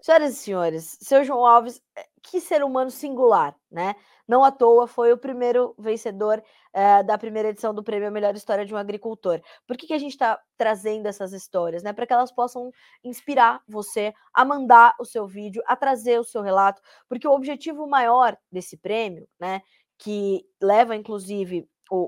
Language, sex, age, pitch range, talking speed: Portuguese, female, 20-39, 195-245 Hz, 180 wpm